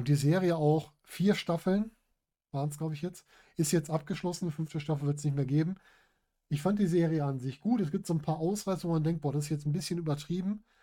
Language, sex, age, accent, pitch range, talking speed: German, male, 10-29, German, 135-160 Hz, 250 wpm